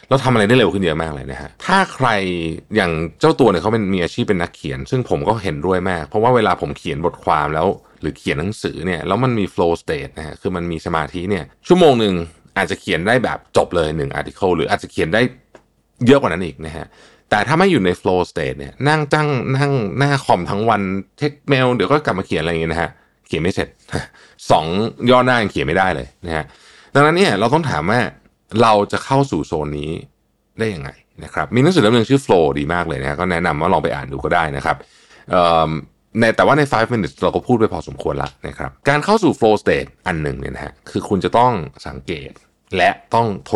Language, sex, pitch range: Thai, male, 80-120 Hz